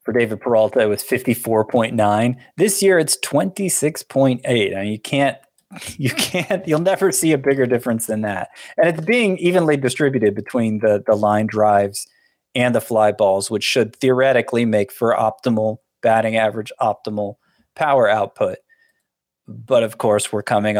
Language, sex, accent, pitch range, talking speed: English, male, American, 105-140 Hz, 160 wpm